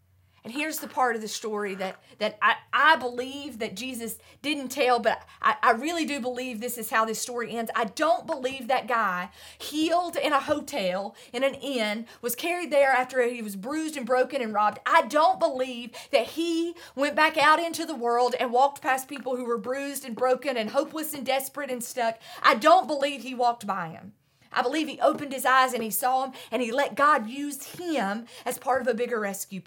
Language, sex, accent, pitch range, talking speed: English, female, American, 230-285 Hz, 215 wpm